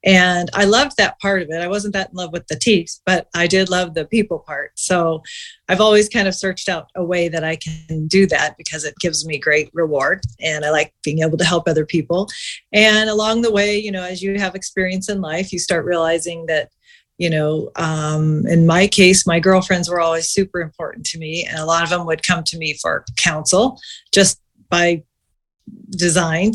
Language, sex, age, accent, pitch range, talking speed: English, female, 40-59, American, 165-200 Hz, 215 wpm